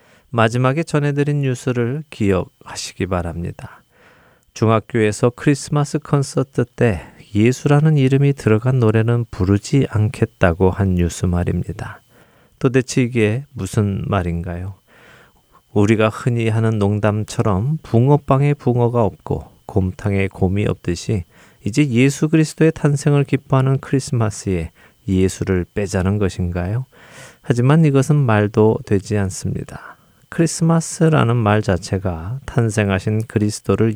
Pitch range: 95-135 Hz